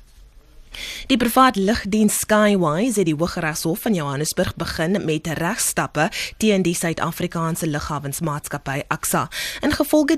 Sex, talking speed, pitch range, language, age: female, 110 wpm, 145-195 Hz, English, 20-39